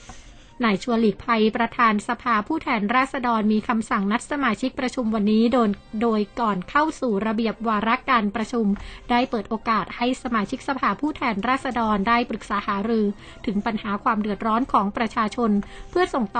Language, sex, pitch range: Thai, female, 210-250 Hz